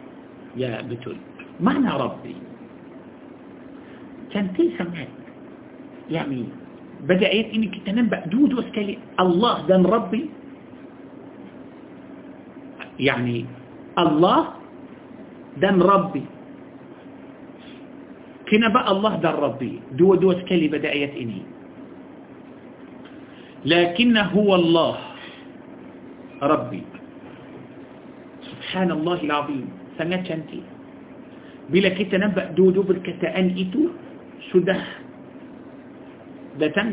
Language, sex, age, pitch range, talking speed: Malay, male, 50-69, 170-285 Hz, 80 wpm